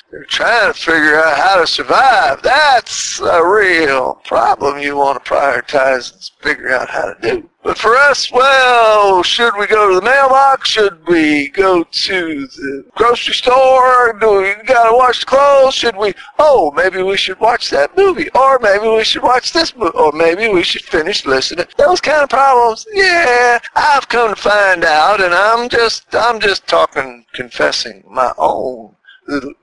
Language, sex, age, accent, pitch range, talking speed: English, male, 50-69, American, 165-265 Hz, 180 wpm